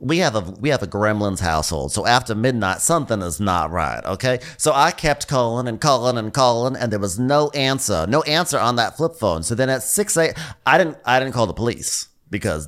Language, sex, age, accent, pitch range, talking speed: English, male, 30-49, American, 115-160 Hz, 225 wpm